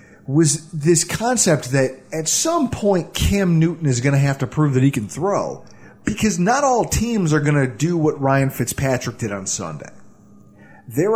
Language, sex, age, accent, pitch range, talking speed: English, male, 30-49, American, 140-205 Hz, 185 wpm